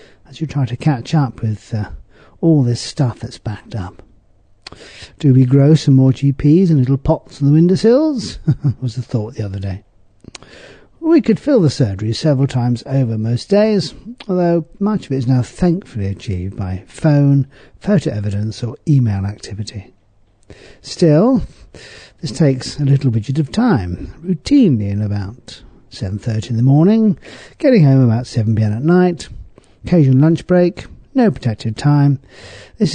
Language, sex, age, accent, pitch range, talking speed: English, male, 50-69, British, 110-160 Hz, 155 wpm